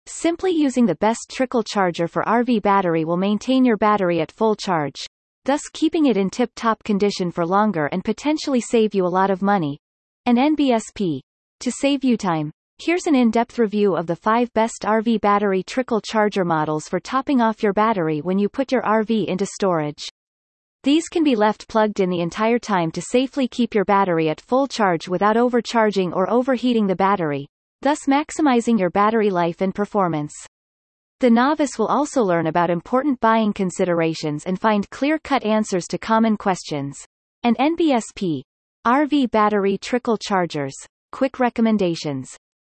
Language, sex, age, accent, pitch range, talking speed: English, female, 30-49, American, 180-245 Hz, 170 wpm